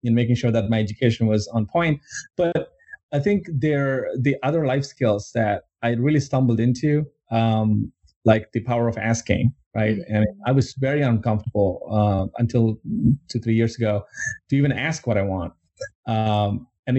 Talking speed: 170 wpm